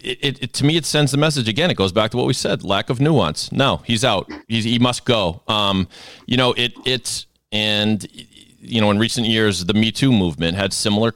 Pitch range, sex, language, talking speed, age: 105-140 Hz, male, English, 235 wpm, 40-59